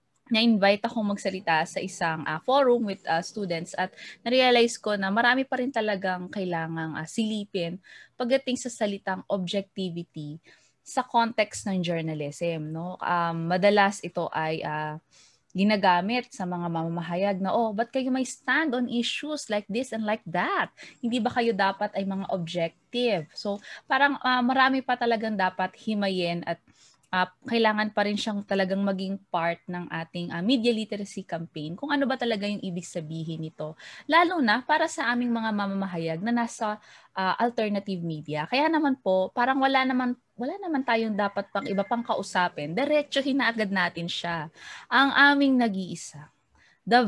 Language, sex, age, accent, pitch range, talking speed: Filipino, female, 20-39, native, 175-245 Hz, 160 wpm